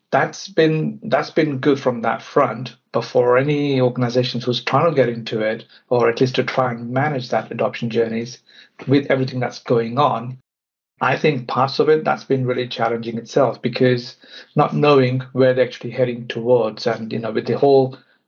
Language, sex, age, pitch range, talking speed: English, male, 60-79, 120-135 Hz, 185 wpm